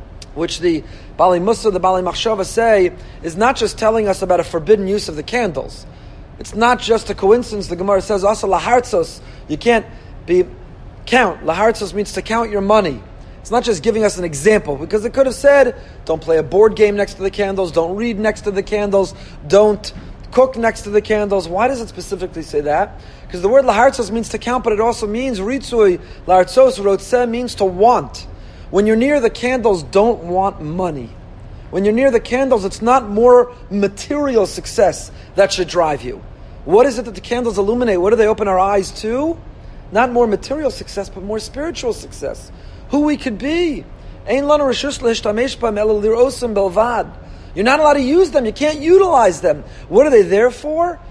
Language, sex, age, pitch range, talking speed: English, male, 30-49, 185-245 Hz, 185 wpm